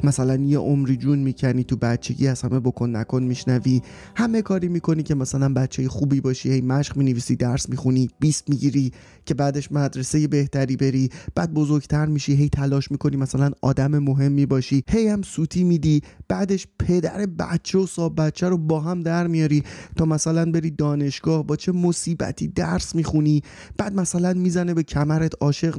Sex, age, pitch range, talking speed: male, 30-49, 135-165 Hz, 165 wpm